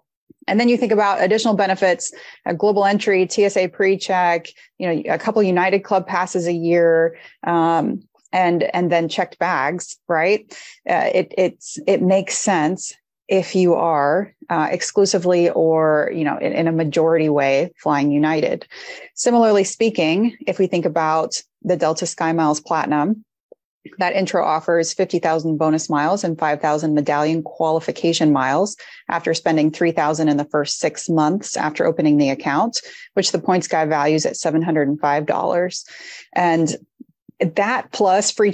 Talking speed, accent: 145 wpm, American